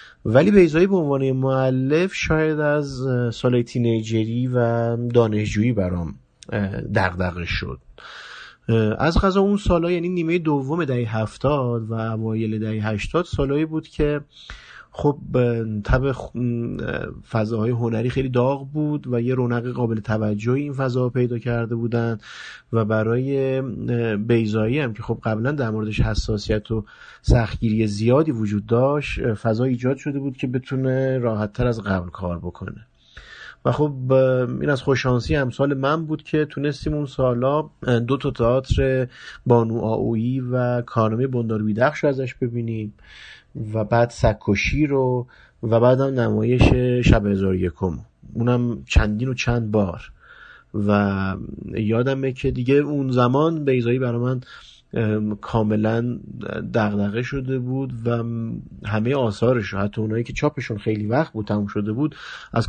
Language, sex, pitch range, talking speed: Persian, male, 110-135 Hz, 135 wpm